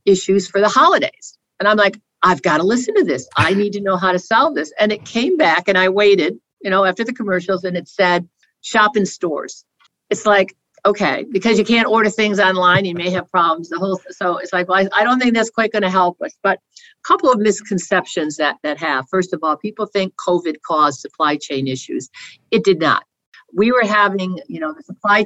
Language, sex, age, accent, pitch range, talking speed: English, female, 60-79, American, 160-200 Hz, 225 wpm